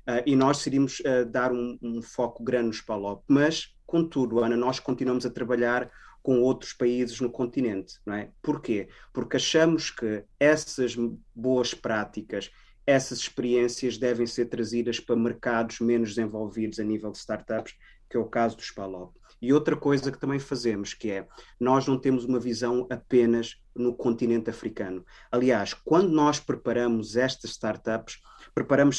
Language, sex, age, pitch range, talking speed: Portuguese, male, 20-39, 115-135 Hz, 155 wpm